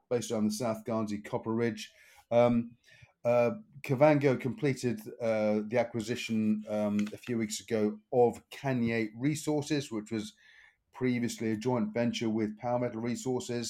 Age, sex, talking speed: 30-49, male, 140 wpm